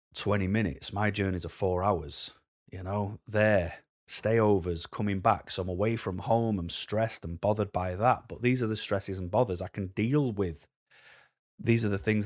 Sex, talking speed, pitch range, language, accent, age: male, 195 wpm, 90-110 Hz, English, British, 30-49